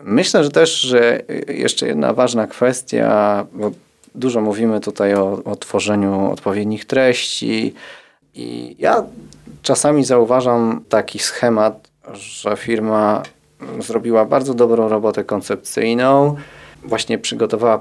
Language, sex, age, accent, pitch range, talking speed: Polish, male, 30-49, native, 105-125 Hz, 110 wpm